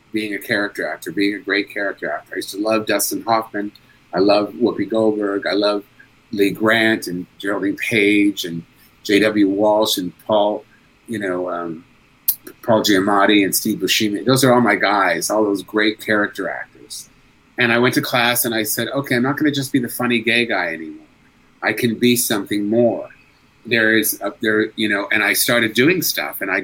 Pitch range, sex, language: 105-120 Hz, male, English